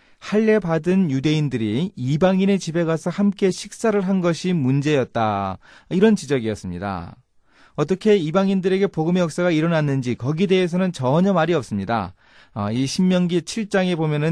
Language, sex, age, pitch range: Korean, male, 30-49, 120-175 Hz